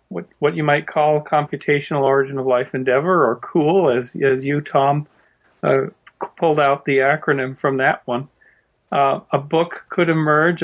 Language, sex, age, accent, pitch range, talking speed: English, male, 40-59, American, 140-160 Hz, 165 wpm